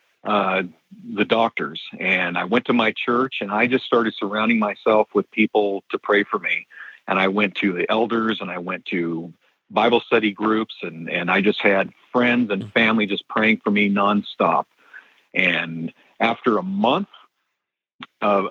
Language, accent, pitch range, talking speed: English, American, 100-120 Hz, 170 wpm